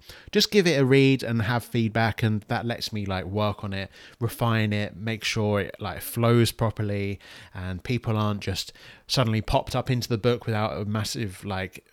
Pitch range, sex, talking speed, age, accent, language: 100-125 Hz, male, 190 wpm, 30-49, British, English